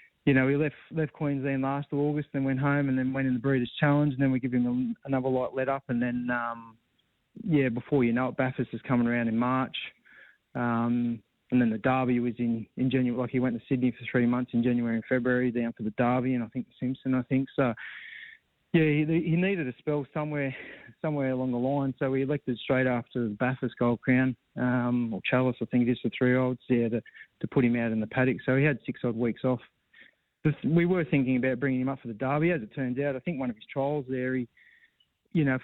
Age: 20-39